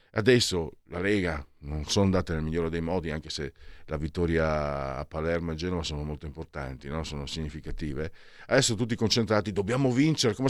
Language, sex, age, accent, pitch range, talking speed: Italian, male, 50-69, native, 80-110 Hz, 170 wpm